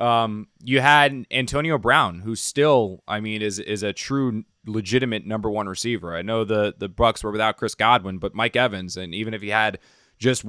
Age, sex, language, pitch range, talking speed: 20-39, male, English, 100-115 Hz, 200 wpm